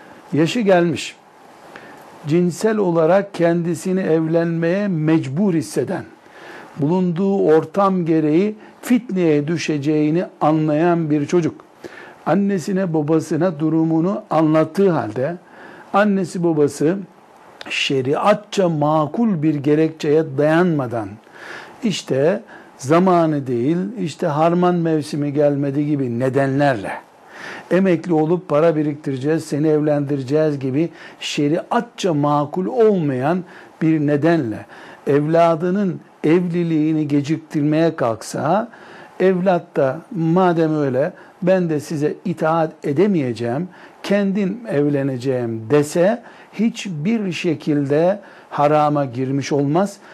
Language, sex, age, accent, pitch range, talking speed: Turkish, male, 60-79, native, 150-185 Hz, 85 wpm